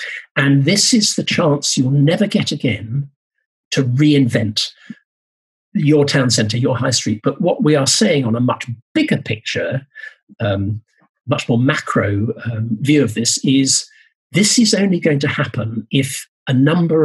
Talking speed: 160 wpm